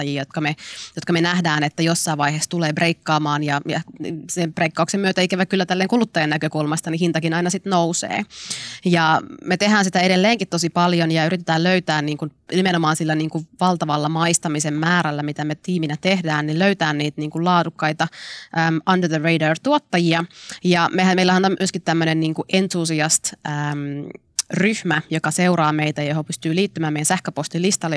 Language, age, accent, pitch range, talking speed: Finnish, 20-39, native, 155-185 Hz, 165 wpm